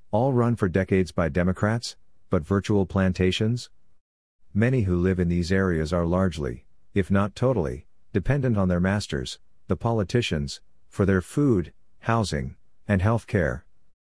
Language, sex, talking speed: English, male, 140 wpm